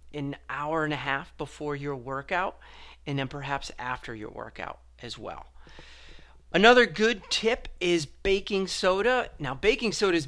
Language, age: English, 40-59